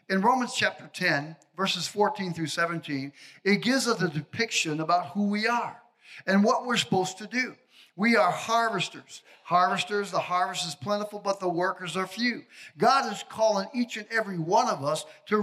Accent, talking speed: American, 180 wpm